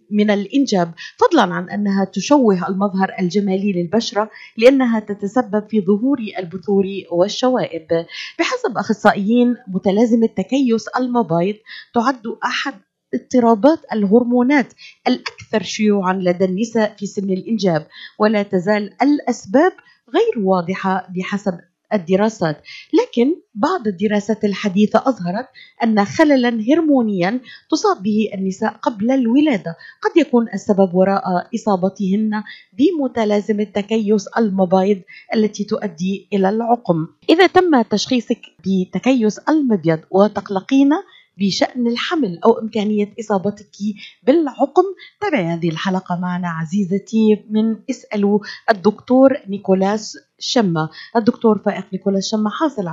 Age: 30-49